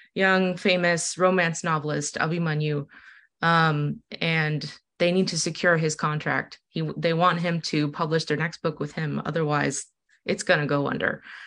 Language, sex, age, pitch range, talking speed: English, female, 20-39, 160-200 Hz, 155 wpm